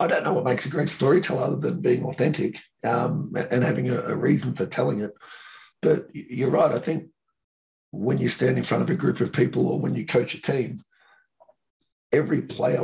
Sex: male